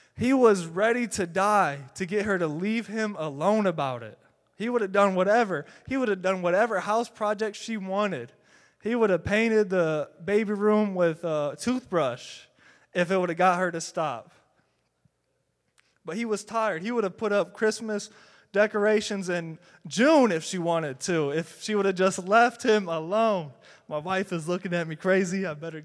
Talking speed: 185 wpm